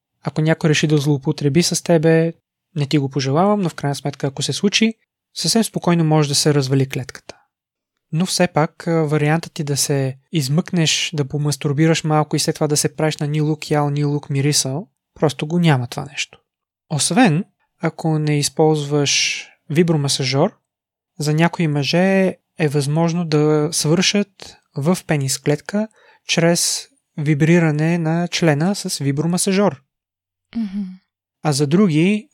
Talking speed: 145 wpm